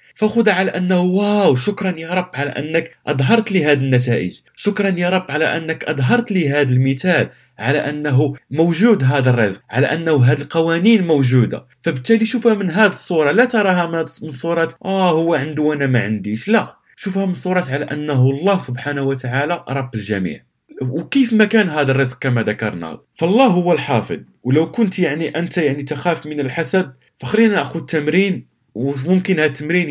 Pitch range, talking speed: 125-180 Hz, 165 wpm